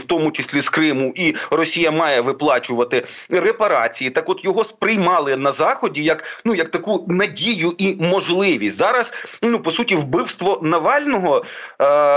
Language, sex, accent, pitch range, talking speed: Ukrainian, male, native, 155-195 Hz, 150 wpm